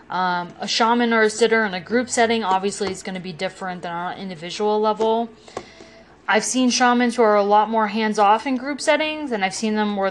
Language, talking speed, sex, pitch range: English, 225 wpm, female, 185-220 Hz